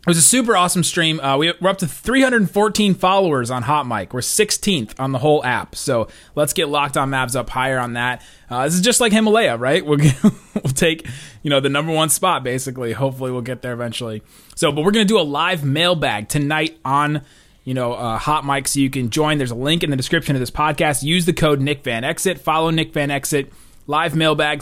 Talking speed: 220 wpm